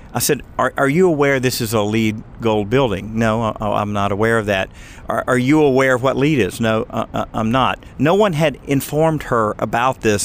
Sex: male